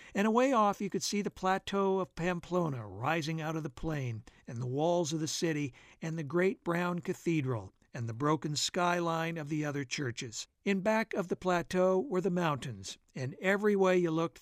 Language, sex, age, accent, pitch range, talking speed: English, male, 60-79, American, 140-185 Hz, 195 wpm